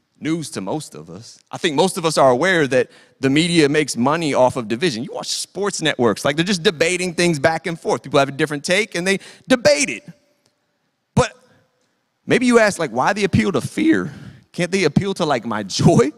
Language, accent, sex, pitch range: English, American, male, 170-230 Hz